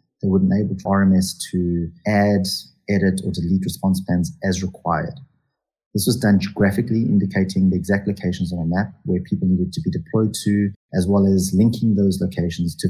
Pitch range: 90-100 Hz